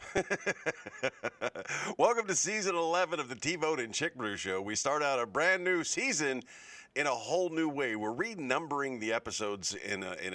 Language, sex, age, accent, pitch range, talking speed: English, male, 40-59, American, 105-160 Hz, 160 wpm